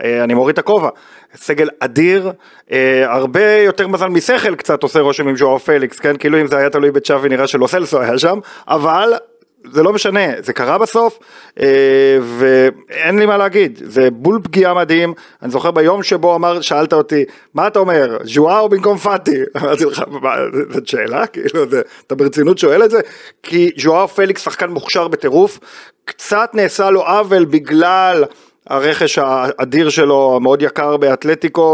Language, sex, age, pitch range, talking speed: Hebrew, male, 40-59, 140-210 Hz, 160 wpm